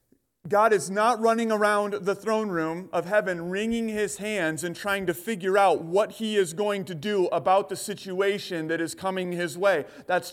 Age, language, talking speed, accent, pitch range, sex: 30-49, English, 190 wpm, American, 190-225 Hz, male